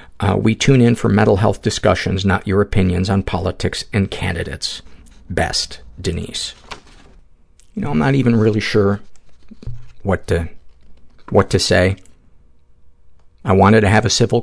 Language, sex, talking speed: English, male, 145 wpm